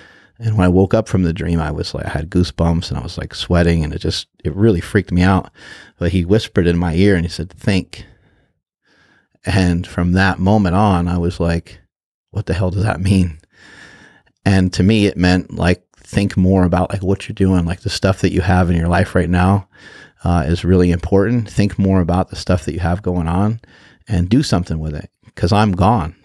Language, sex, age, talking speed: English, male, 30-49, 220 wpm